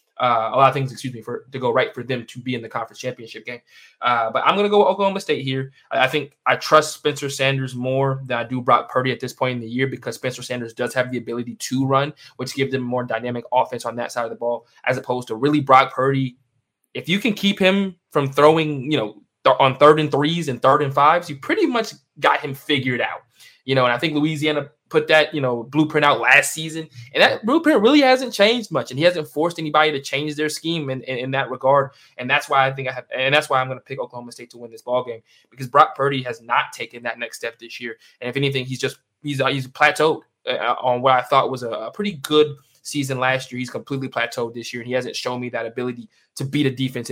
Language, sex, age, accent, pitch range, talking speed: English, male, 20-39, American, 125-150 Hz, 265 wpm